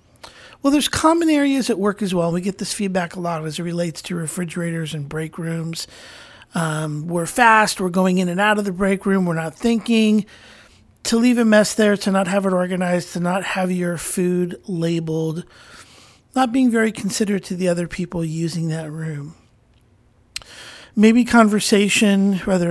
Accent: American